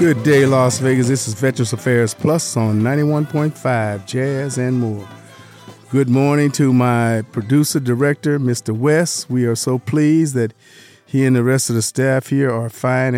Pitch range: 115-130 Hz